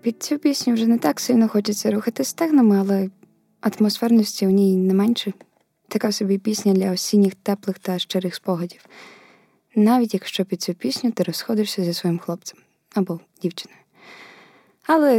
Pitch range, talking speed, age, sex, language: 185-215 Hz, 150 wpm, 20-39, female, Ukrainian